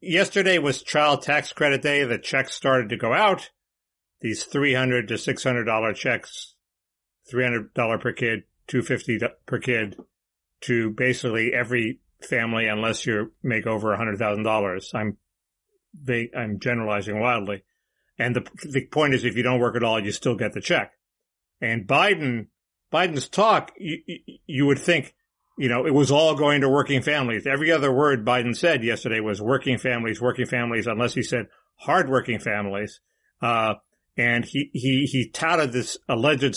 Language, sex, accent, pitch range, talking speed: English, male, American, 115-140 Hz, 170 wpm